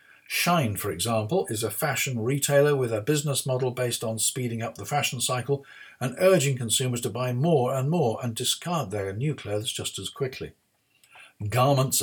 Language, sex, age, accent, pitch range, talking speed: English, male, 50-69, British, 110-150 Hz, 175 wpm